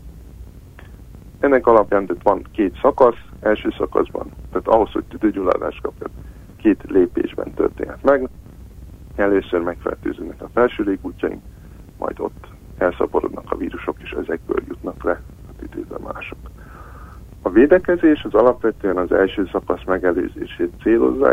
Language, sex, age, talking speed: Hungarian, male, 60-79, 115 wpm